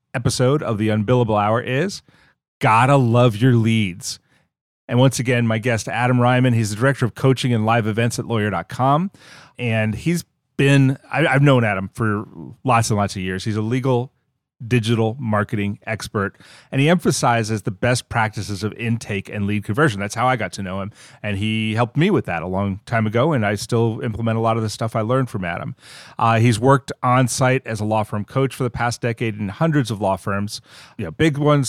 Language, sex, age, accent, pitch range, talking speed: English, male, 30-49, American, 105-130 Hz, 205 wpm